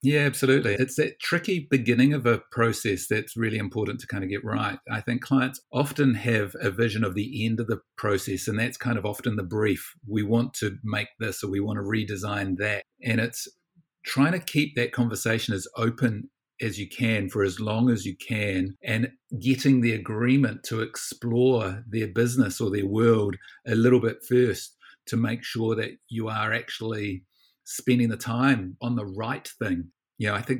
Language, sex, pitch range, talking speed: English, male, 100-125 Hz, 195 wpm